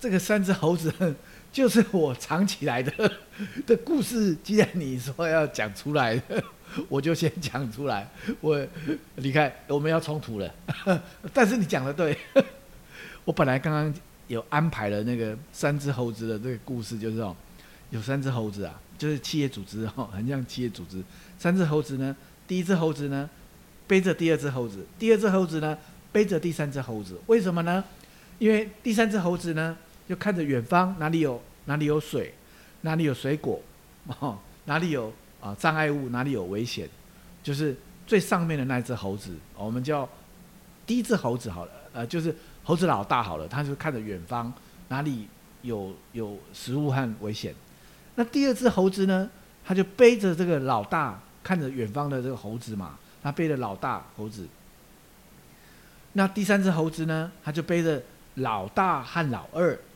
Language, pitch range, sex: English, 125-185 Hz, male